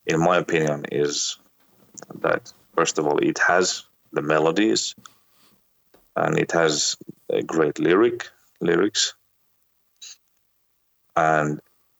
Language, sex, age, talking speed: Portuguese, male, 30-49, 100 wpm